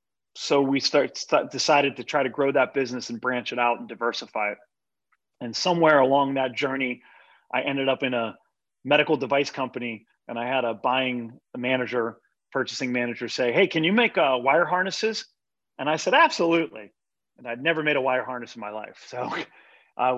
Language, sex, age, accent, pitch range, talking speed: English, male, 30-49, American, 120-150 Hz, 185 wpm